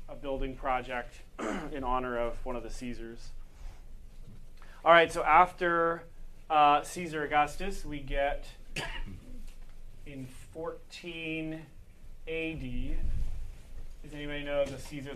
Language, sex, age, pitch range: English, male, 30-49, 120-145 Hz